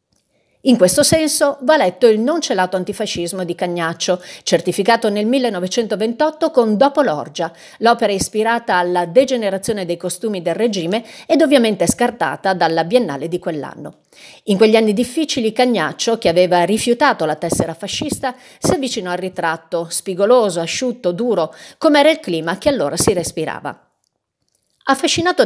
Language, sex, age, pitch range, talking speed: Italian, female, 40-59, 180-255 Hz, 140 wpm